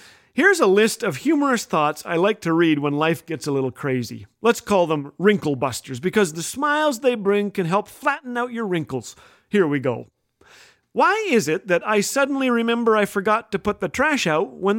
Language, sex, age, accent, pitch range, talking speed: English, male, 40-59, American, 175-245 Hz, 205 wpm